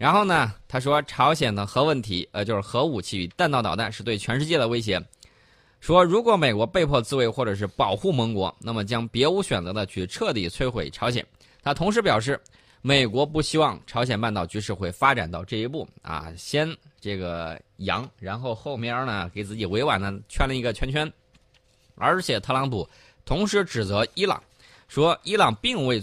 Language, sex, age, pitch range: Chinese, male, 20-39, 105-145 Hz